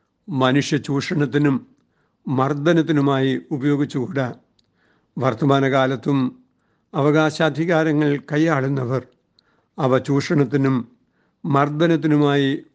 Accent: native